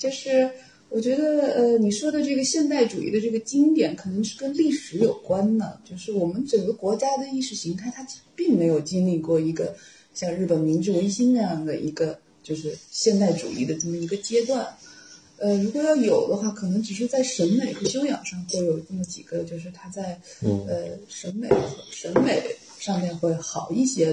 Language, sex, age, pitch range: Chinese, female, 30-49, 170-240 Hz